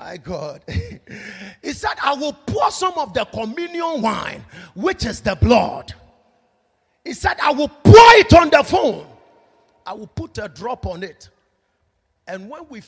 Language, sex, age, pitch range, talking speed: English, male, 40-59, 195-325 Hz, 165 wpm